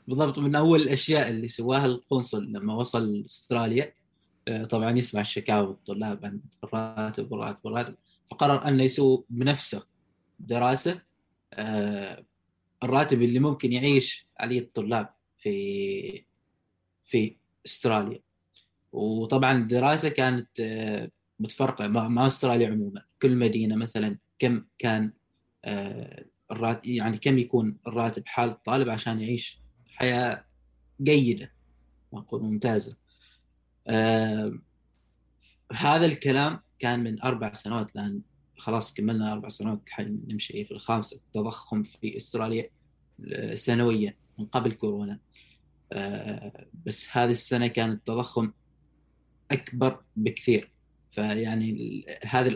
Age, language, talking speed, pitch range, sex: 20-39, Arabic, 105 wpm, 105-130 Hz, male